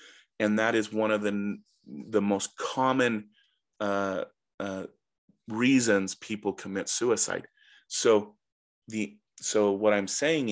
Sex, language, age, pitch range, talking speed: male, English, 30-49, 100-120 Hz, 120 wpm